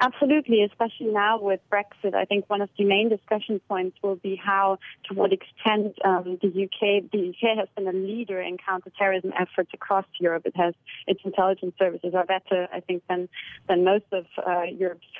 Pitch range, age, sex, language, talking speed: 180-205 Hz, 30-49, female, English, 190 wpm